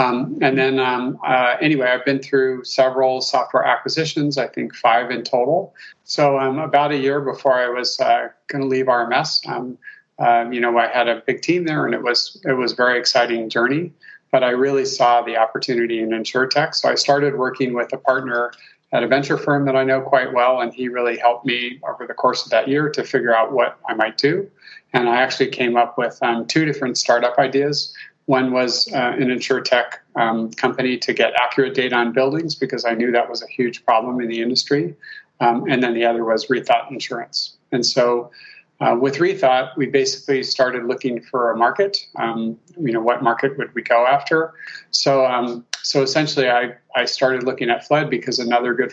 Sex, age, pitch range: male, 40-59, 120-140 Hz